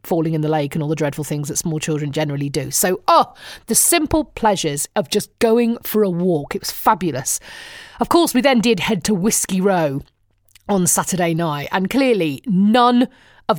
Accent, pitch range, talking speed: British, 175-280 Hz, 195 wpm